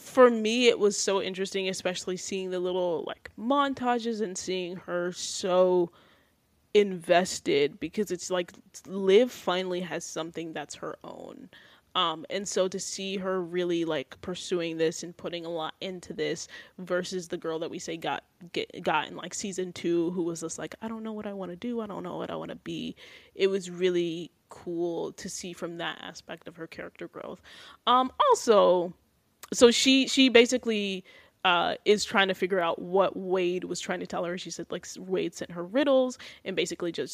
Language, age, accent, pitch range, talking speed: English, 10-29, American, 175-205 Hz, 190 wpm